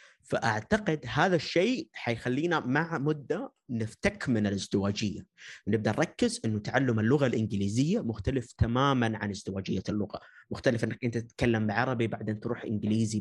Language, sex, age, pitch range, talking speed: Arabic, male, 20-39, 105-125 Hz, 125 wpm